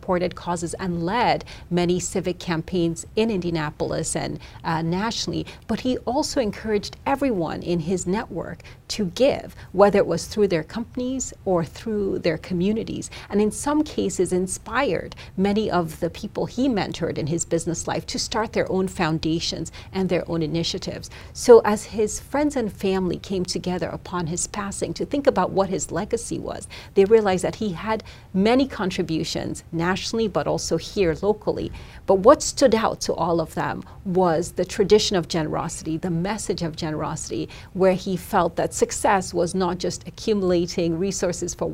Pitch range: 170-210 Hz